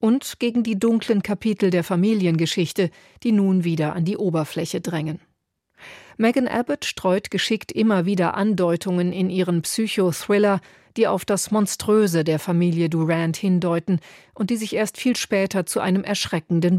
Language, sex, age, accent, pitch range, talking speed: German, female, 40-59, German, 180-215 Hz, 145 wpm